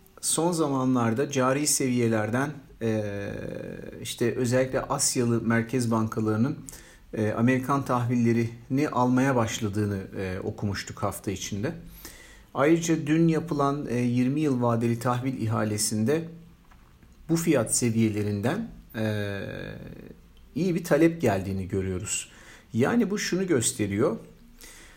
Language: Turkish